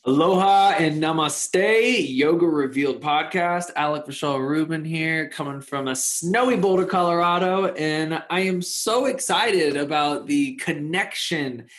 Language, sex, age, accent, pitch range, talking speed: English, male, 20-39, American, 130-175 Hz, 120 wpm